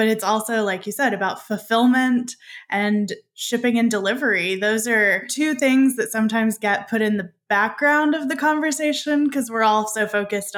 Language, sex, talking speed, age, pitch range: English, female, 175 wpm, 10-29, 210-260 Hz